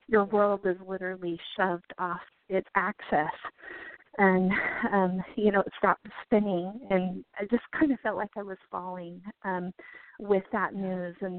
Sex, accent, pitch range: female, American, 180-215 Hz